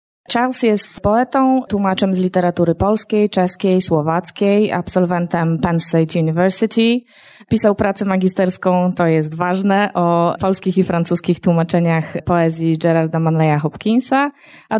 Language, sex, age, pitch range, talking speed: Polish, female, 20-39, 165-200 Hz, 120 wpm